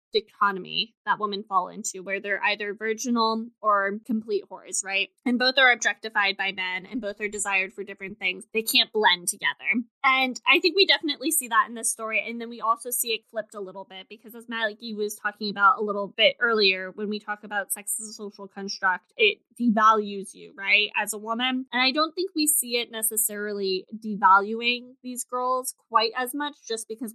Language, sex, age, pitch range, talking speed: English, female, 20-39, 205-250 Hz, 205 wpm